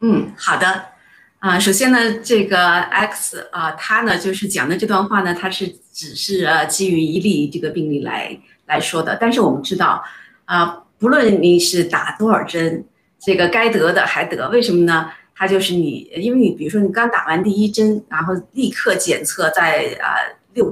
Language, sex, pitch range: Chinese, female, 175-215 Hz